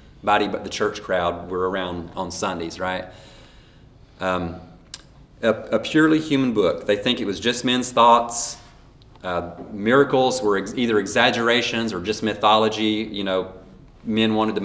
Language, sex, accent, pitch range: English, male, American, 100-125 Hz